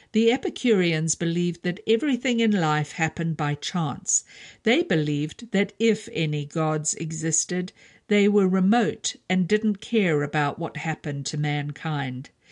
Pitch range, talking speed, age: 160-205 Hz, 135 wpm, 50-69